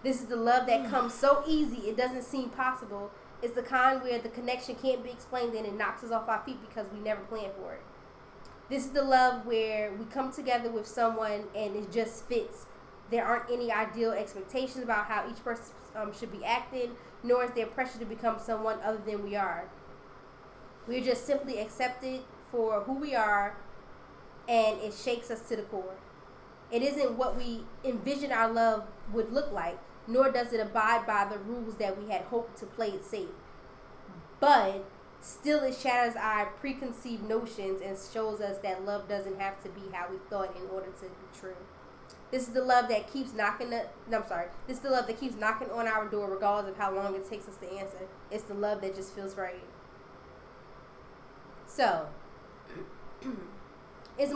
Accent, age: American, 10-29